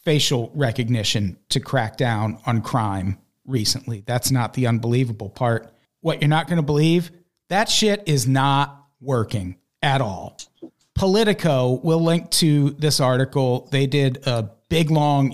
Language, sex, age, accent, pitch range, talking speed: English, male, 40-59, American, 120-160 Hz, 145 wpm